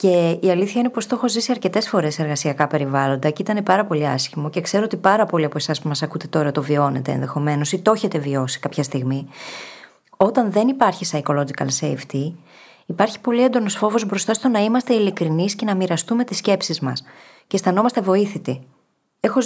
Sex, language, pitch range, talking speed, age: female, Greek, 155-230 Hz, 190 wpm, 20-39